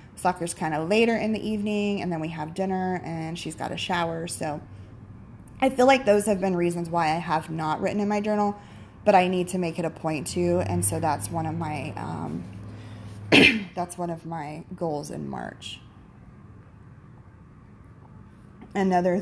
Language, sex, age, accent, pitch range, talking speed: English, female, 20-39, American, 125-195 Hz, 180 wpm